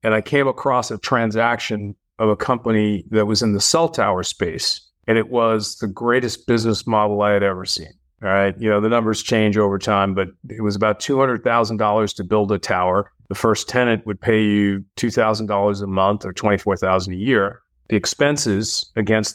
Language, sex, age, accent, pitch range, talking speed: English, male, 40-59, American, 105-120 Hz, 190 wpm